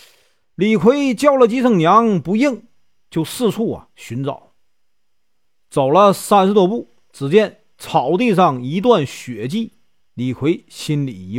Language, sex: Chinese, male